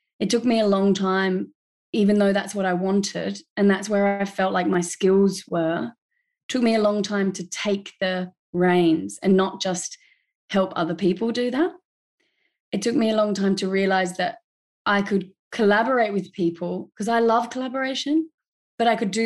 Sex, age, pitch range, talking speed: female, 20-39, 185-220 Hz, 185 wpm